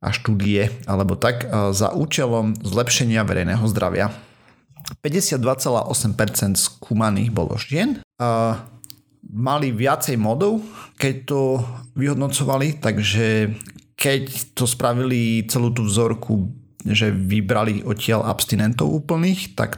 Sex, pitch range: male, 110-130 Hz